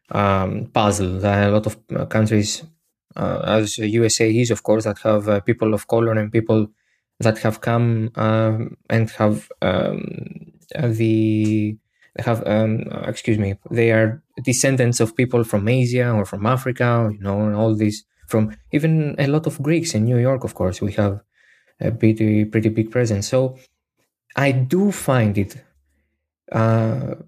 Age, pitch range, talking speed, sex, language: 20-39, 110-135 Hz, 160 wpm, male, Greek